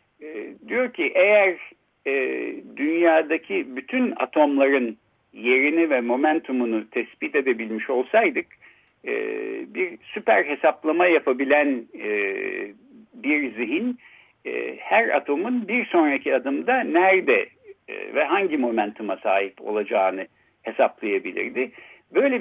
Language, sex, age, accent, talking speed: Turkish, male, 60-79, native, 100 wpm